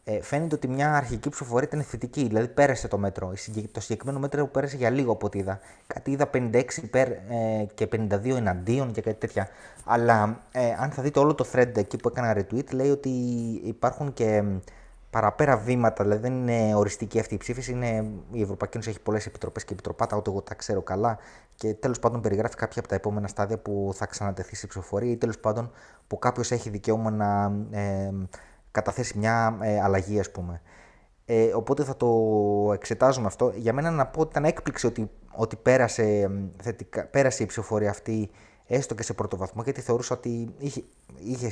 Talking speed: 180 wpm